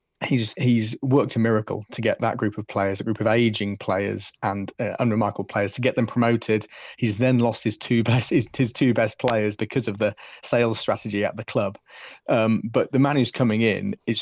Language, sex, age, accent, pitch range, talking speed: English, male, 30-49, British, 105-115 Hz, 215 wpm